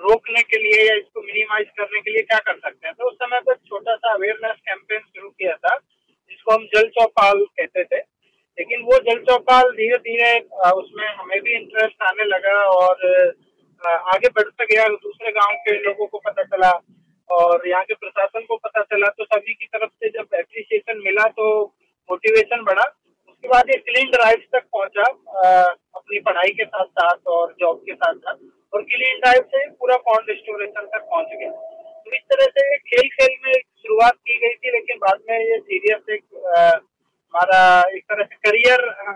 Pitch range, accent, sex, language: 205-255 Hz, native, male, Hindi